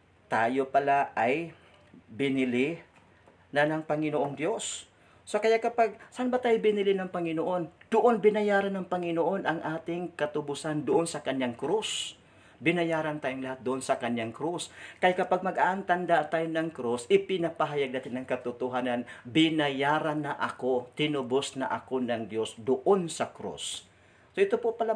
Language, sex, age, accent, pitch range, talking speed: Filipino, male, 50-69, native, 120-165 Hz, 140 wpm